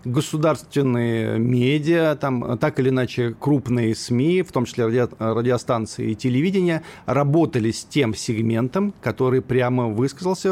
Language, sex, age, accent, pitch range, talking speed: Russian, male, 40-59, native, 120-165 Hz, 125 wpm